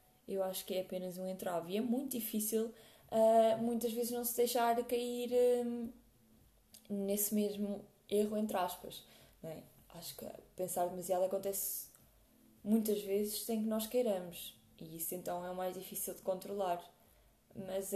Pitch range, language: 185-230 Hz, Portuguese